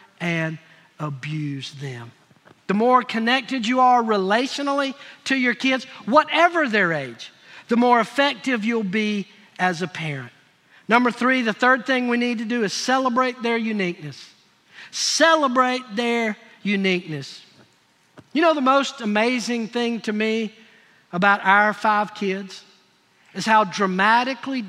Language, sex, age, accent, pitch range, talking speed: English, male, 50-69, American, 195-260 Hz, 130 wpm